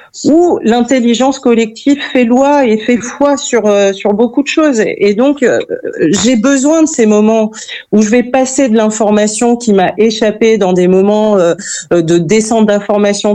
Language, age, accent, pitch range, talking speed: French, 40-59, French, 210-255 Hz, 175 wpm